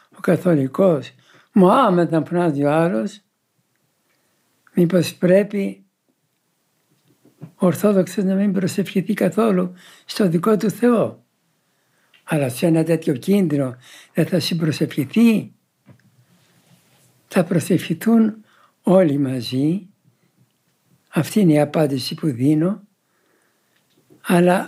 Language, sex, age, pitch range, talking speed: Greek, male, 60-79, 145-195 Hz, 90 wpm